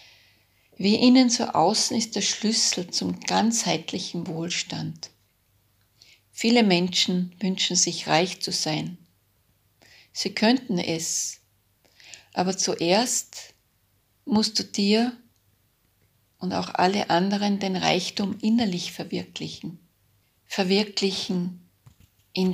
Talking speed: 95 wpm